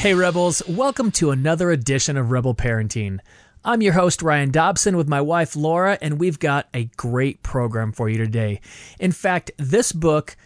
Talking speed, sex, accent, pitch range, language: 180 wpm, male, American, 135-185 Hz, English